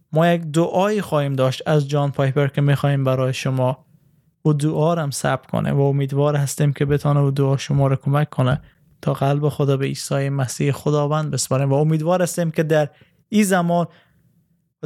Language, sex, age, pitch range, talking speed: Persian, male, 20-39, 140-165 Hz, 175 wpm